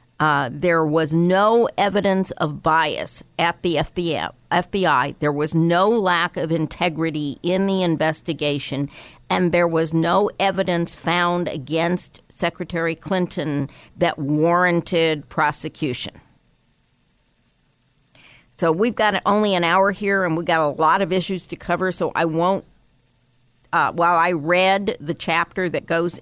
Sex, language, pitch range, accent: female, English, 155-185 Hz, American